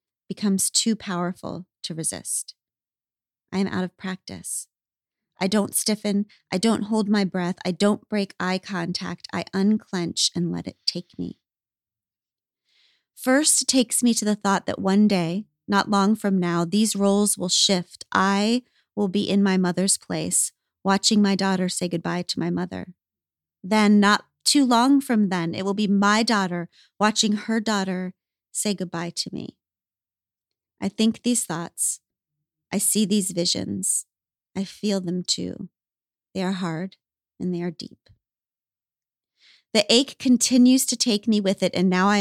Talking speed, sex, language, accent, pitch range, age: 160 wpm, female, English, American, 180-210 Hz, 30-49